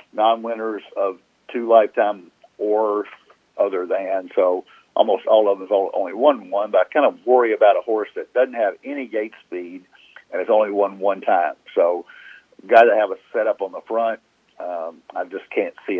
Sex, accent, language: male, American, English